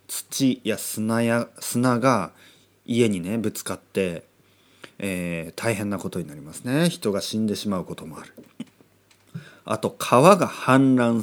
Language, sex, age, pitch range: Japanese, male, 40-59, 105-150 Hz